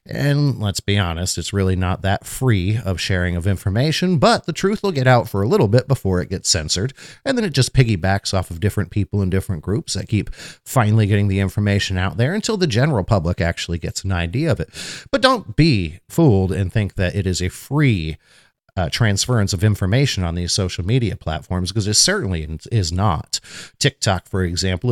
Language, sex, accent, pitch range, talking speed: English, male, American, 95-130 Hz, 205 wpm